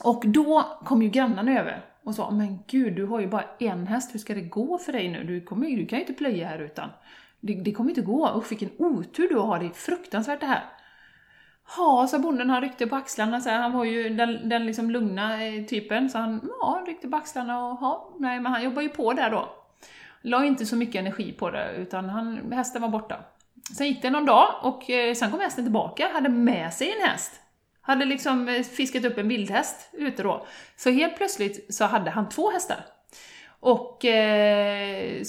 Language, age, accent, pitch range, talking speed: Swedish, 30-49, native, 215-285 Hz, 220 wpm